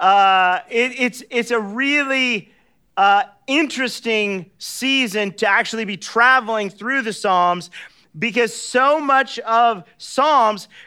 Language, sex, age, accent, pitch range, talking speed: English, male, 40-59, American, 170-235 Hz, 115 wpm